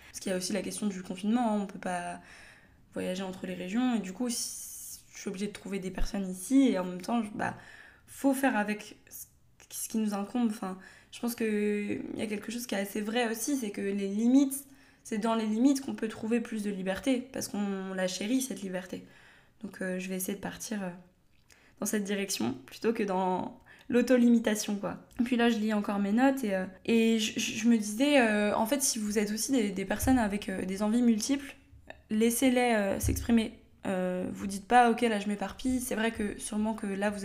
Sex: female